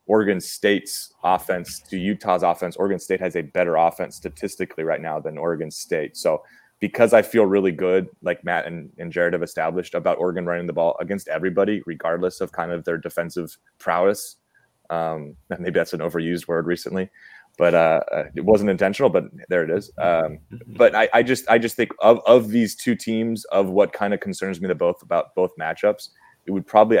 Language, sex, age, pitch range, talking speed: English, male, 20-39, 85-105 Hz, 200 wpm